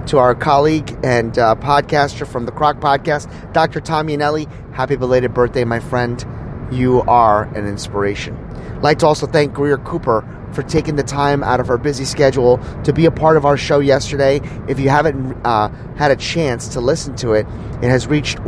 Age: 30-49